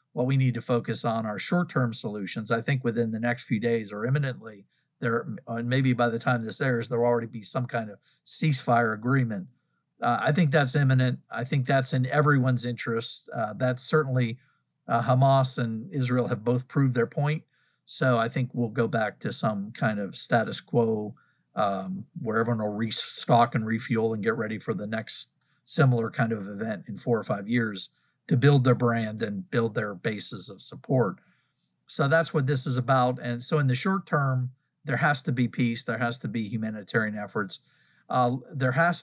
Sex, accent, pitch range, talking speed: male, American, 115-135 Hz, 200 wpm